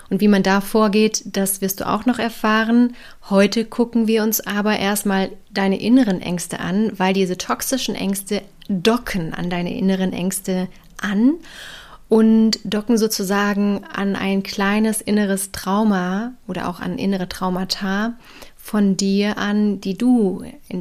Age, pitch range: 30-49, 185-220 Hz